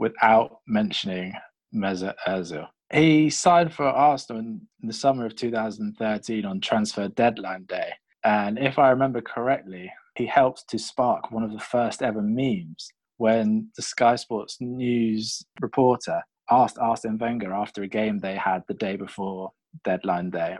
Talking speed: 150 wpm